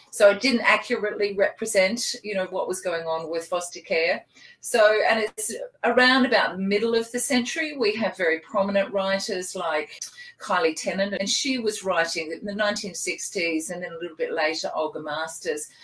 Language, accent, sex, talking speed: English, Australian, female, 180 wpm